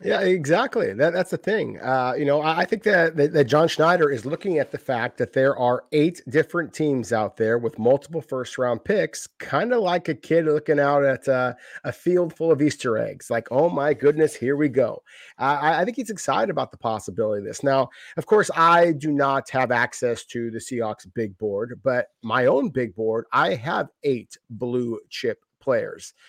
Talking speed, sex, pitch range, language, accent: 210 wpm, male, 115-155 Hz, English, American